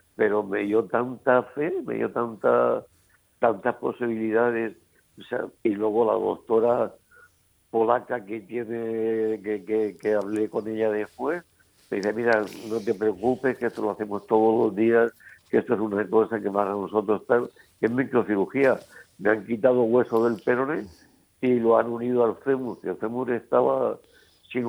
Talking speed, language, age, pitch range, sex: 165 wpm, Spanish, 60-79, 105-125 Hz, male